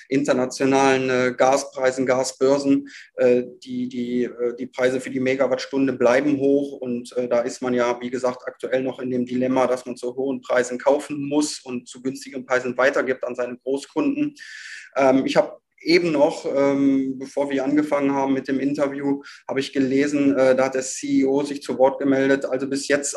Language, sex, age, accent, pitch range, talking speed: German, male, 20-39, German, 125-140 Hz, 180 wpm